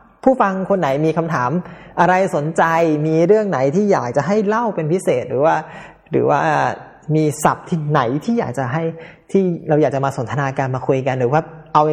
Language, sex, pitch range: Thai, male, 140-175 Hz